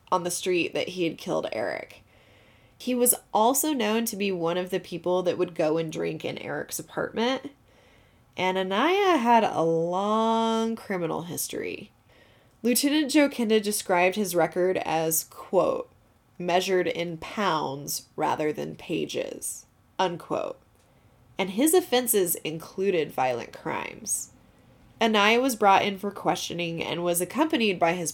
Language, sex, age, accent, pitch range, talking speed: English, female, 20-39, American, 170-220 Hz, 135 wpm